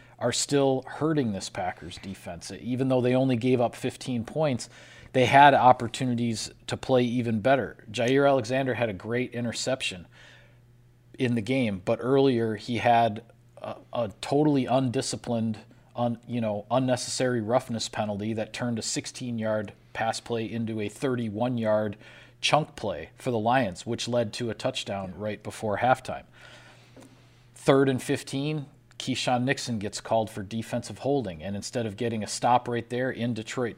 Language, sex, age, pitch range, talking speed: English, male, 40-59, 110-130 Hz, 155 wpm